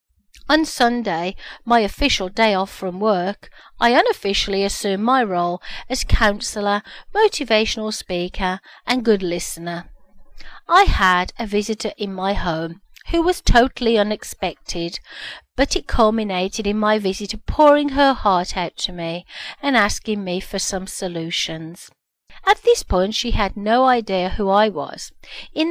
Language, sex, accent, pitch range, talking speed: English, female, British, 185-255 Hz, 140 wpm